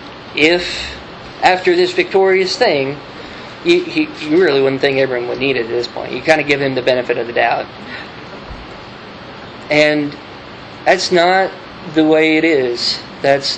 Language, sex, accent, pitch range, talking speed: English, male, American, 135-180 Hz, 165 wpm